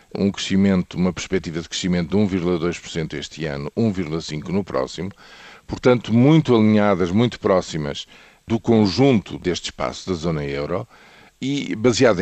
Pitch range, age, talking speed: 90-115 Hz, 50-69, 135 wpm